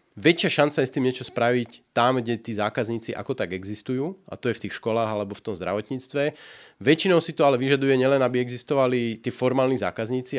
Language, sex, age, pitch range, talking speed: Slovak, male, 30-49, 105-125 Hz, 200 wpm